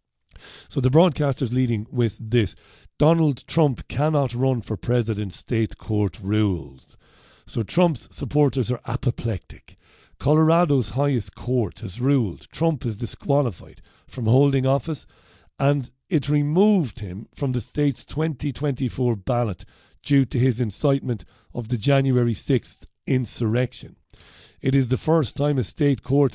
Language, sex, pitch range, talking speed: English, male, 115-140 Hz, 130 wpm